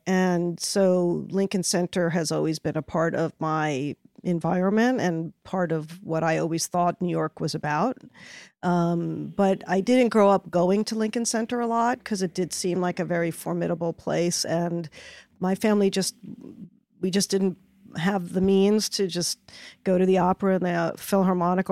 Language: English